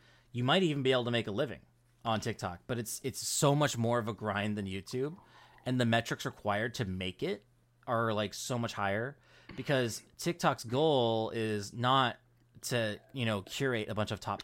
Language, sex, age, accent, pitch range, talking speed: English, male, 30-49, American, 105-125 Hz, 195 wpm